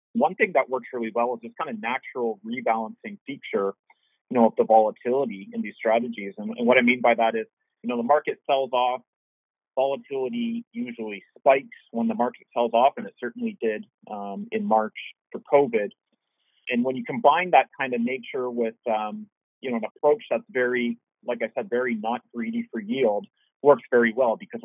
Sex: male